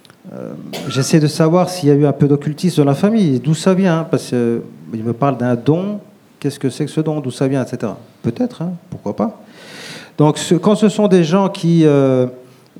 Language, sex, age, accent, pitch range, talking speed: French, male, 40-59, French, 130-180 Hz, 225 wpm